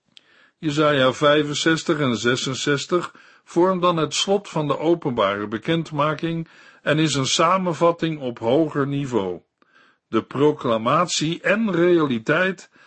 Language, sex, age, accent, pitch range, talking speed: Dutch, male, 60-79, Dutch, 125-165 Hz, 105 wpm